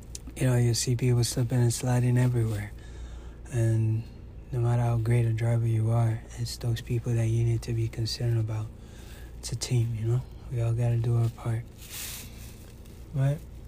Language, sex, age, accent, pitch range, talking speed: English, male, 20-39, American, 115-125 Hz, 180 wpm